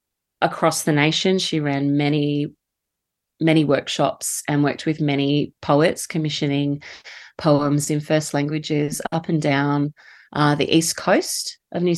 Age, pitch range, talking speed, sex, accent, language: 30-49, 145-170 Hz, 135 wpm, female, Australian, English